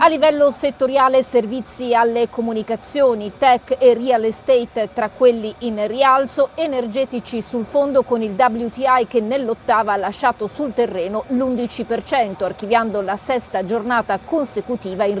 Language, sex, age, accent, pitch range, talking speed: Italian, female, 40-59, native, 205-255 Hz, 130 wpm